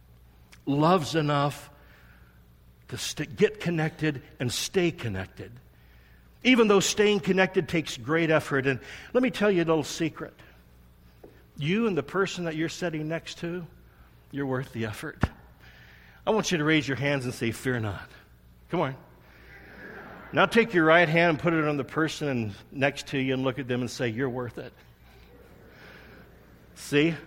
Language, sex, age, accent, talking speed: English, male, 60-79, American, 160 wpm